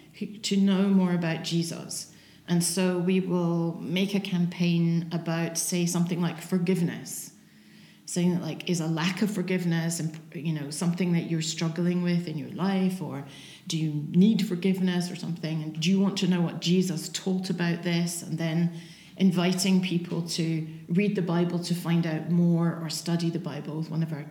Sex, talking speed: female, 185 wpm